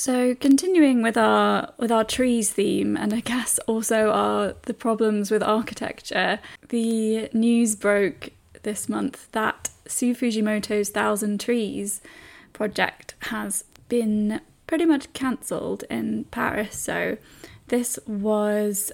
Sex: female